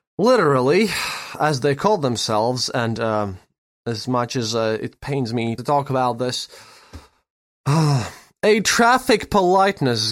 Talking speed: 130 wpm